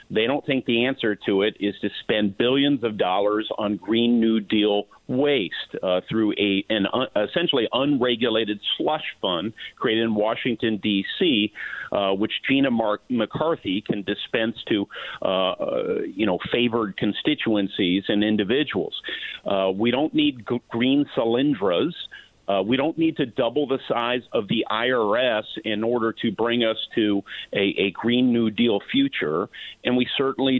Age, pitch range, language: 50-69, 105-135 Hz, English